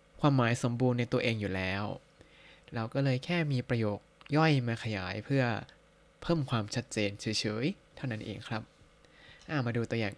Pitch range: 110-150 Hz